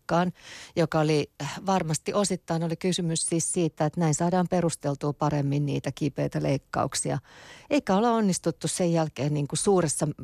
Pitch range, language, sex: 140-165 Hz, Finnish, female